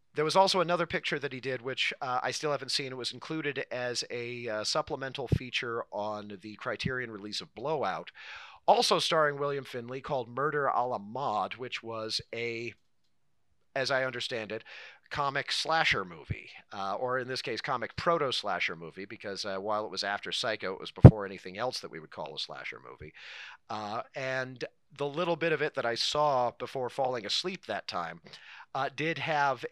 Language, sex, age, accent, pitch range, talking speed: English, male, 40-59, American, 120-150 Hz, 185 wpm